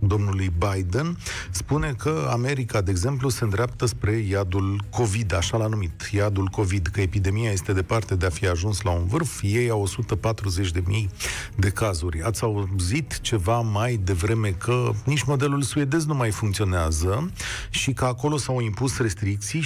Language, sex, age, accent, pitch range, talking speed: Romanian, male, 40-59, native, 100-140 Hz, 155 wpm